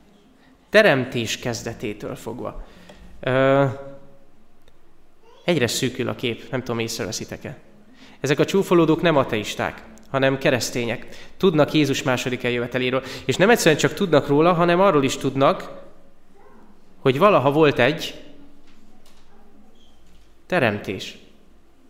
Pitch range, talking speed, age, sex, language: 125-155 Hz, 100 wpm, 20-39, male, Hungarian